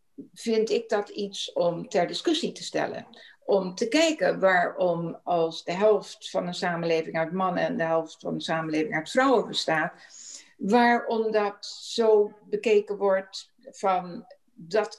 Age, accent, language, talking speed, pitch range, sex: 60-79, Dutch, Dutch, 150 wpm, 180-235 Hz, female